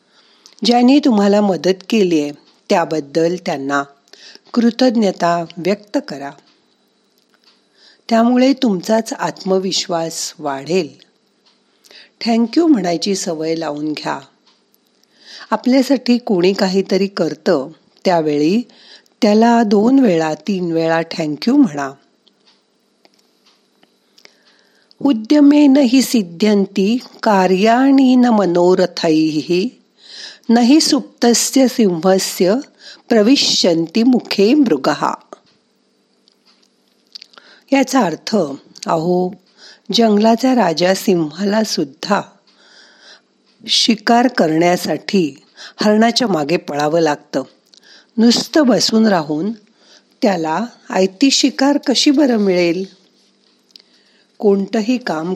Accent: native